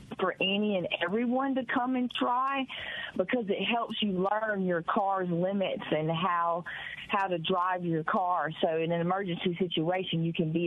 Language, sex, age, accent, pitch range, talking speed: English, female, 40-59, American, 160-195 Hz, 175 wpm